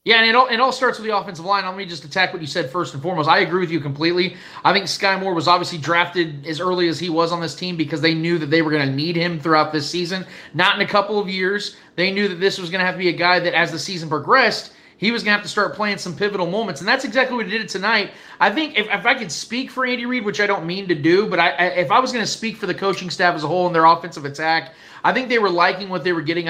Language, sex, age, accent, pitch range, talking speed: English, male, 30-49, American, 165-210 Hz, 310 wpm